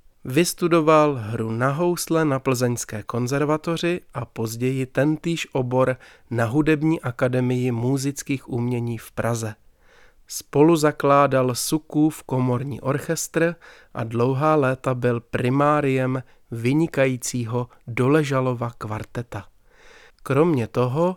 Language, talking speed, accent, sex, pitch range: Czech, 95 wpm, native, male, 120-150 Hz